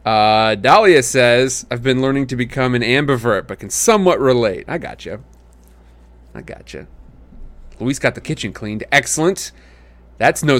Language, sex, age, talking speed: English, male, 30-49, 145 wpm